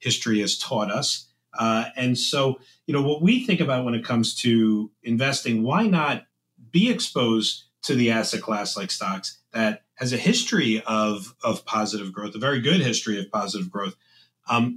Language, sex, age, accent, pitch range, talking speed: English, male, 40-59, American, 115-160 Hz, 180 wpm